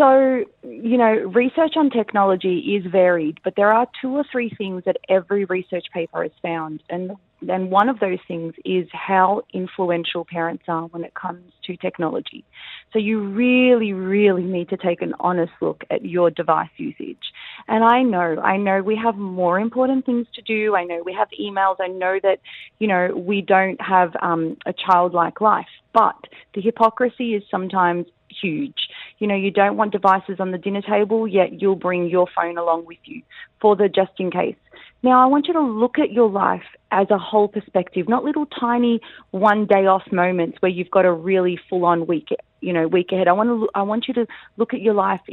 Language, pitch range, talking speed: English, 180-225 Hz, 200 wpm